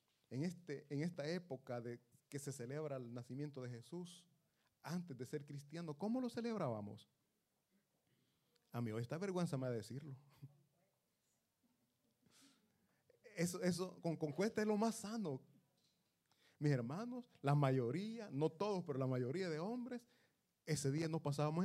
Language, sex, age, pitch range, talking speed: Italian, male, 30-49, 135-190 Hz, 145 wpm